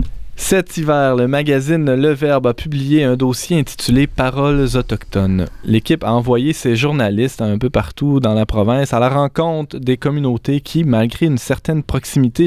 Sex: male